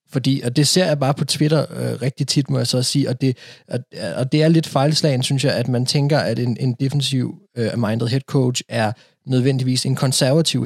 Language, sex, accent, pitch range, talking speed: Danish, male, native, 115-140 Hz, 220 wpm